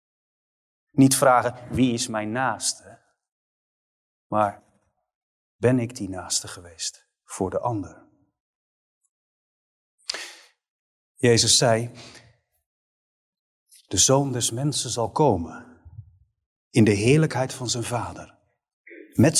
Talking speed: 95 wpm